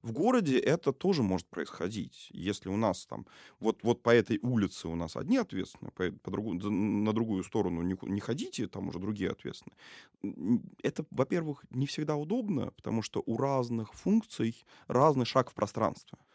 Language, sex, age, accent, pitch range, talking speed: Russian, male, 20-39, native, 95-125 Hz, 155 wpm